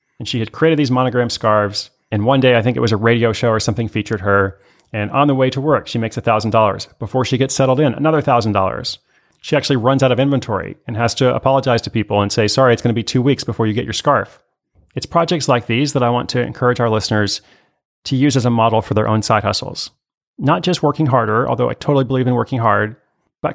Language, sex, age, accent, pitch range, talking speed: English, male, 30-49, American, 110-135 Hz, 245 wpm